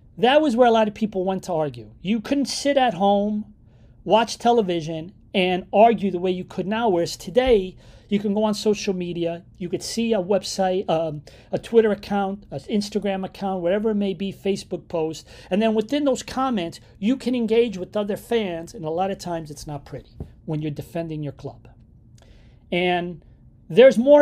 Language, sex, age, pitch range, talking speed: English, male, 40-59, 155-215 Hz, 190 wpm